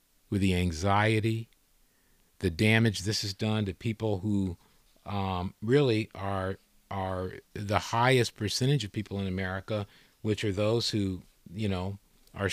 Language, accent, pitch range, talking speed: English, American, 95-110 Hz, 140 wpm